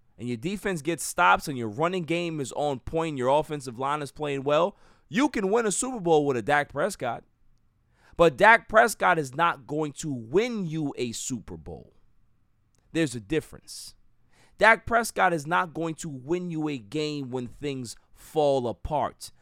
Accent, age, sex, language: American, 30-49, male, English